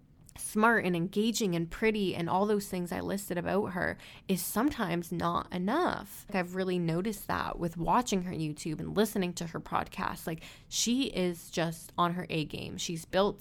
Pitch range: 165-195 Hz